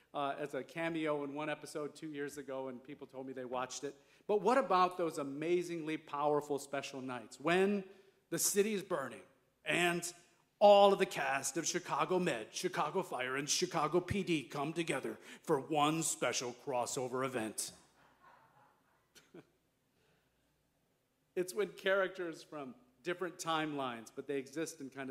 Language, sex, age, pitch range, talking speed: English, male, 40-59, 130-170 Hz, 145 wpm